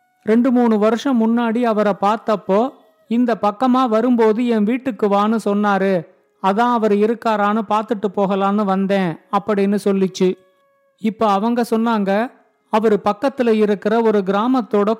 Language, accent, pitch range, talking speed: Tamil, native, 205-240 Hz, 115 wpm